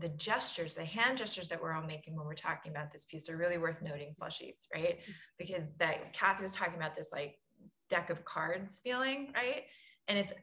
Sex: female